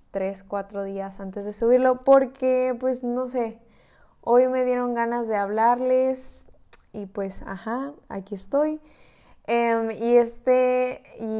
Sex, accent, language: female, Mexican, Spanish